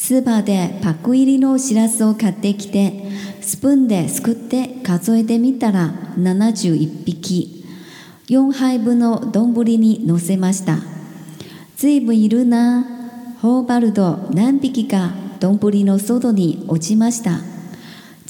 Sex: male